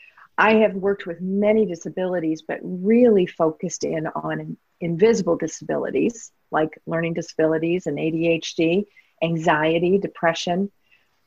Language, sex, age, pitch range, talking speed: English, female, 40-59, 170-210 Hz, 105 wpm